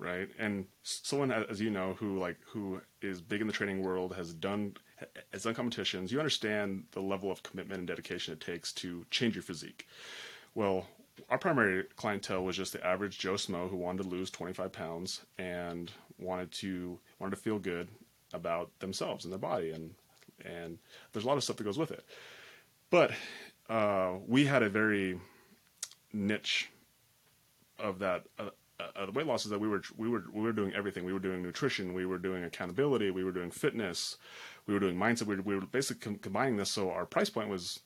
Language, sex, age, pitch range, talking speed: English, male, 30-49, 95-115 Hz, 200 wpm